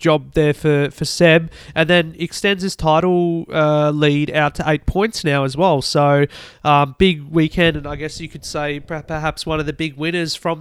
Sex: male